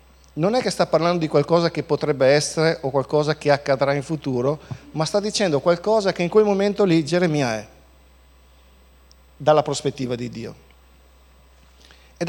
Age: 50-69